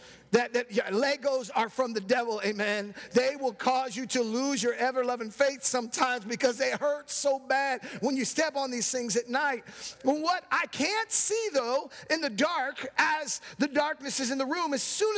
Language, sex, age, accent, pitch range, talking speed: English, male, 50-69, American, 235-290 Hz, 190 wpm